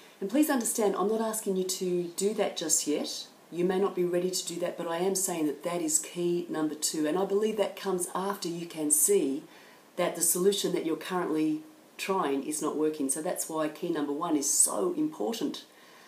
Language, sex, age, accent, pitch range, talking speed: English, female, 40-59, Australian, 160-205 Hz, 215 wpm